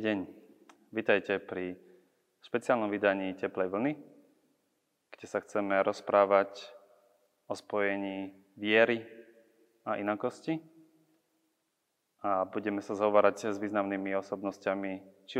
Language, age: Slovak, 20-39